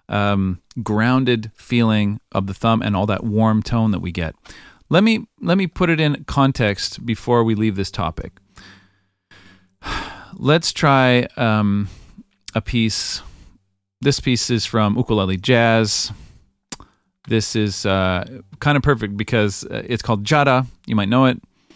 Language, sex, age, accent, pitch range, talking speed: English, male, 40-59, American, 100-130 Hz, 145 wpm